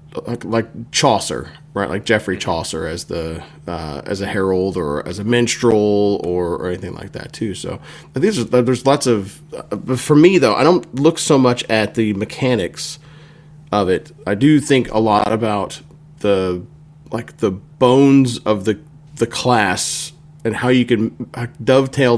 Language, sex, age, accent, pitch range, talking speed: English, male, 30-49, American, 100-135 Hz, 170 wpm